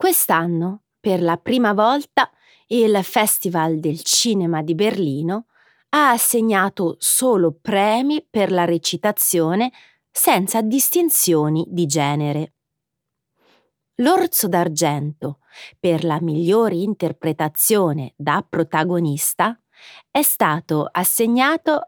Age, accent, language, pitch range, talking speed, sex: 30-49, native, Italian, 155-230 Hz, 90 wpm, female